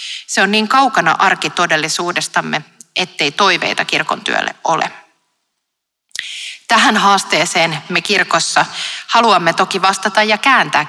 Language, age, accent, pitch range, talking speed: Finnish, 30-49, native, 155-215 Hz, 110 wpm